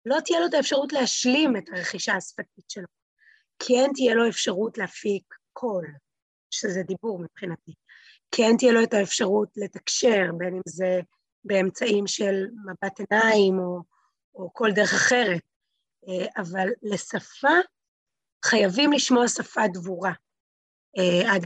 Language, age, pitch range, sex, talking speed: Hebrew, 30-49, 185-250 Hz, female, 125 wpm